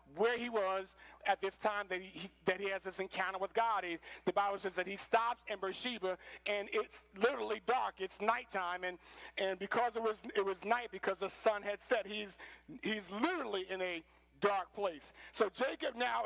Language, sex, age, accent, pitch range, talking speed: English, male, 50-69, American, 195-240 Hz, 195 wpm